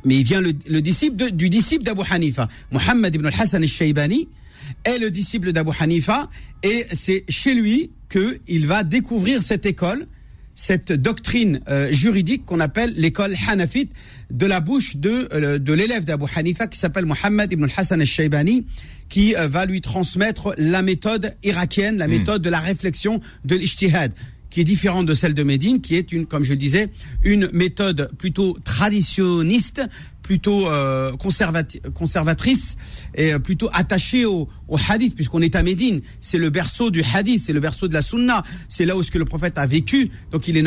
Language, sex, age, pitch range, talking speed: French, male, 50-69, 155-205 Hz, 180 wpm